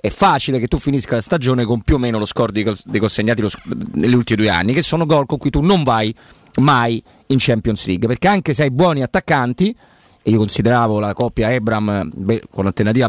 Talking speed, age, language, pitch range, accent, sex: 210 wpm, 40-59, Italian, 120-165 Hz, native, male